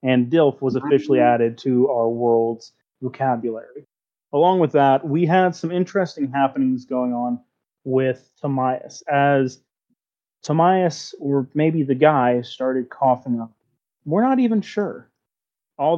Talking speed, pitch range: 130 wpm, 125-145 Hz